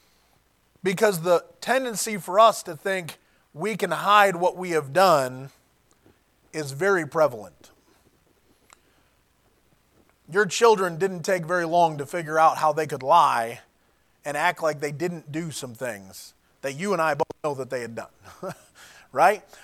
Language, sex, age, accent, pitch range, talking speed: English, male, 30-49, American, 160-205 Hz, 150 wpm